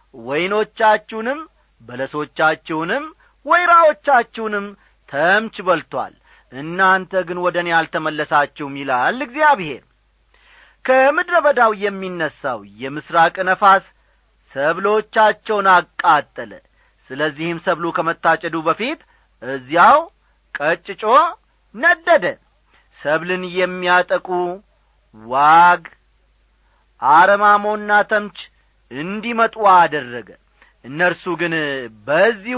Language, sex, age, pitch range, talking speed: Amharic, male, 40-59, 160-230 Hz, 65 wpm